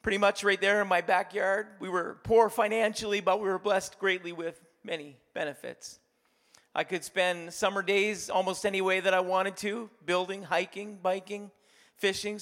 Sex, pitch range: male, 190-220 Hz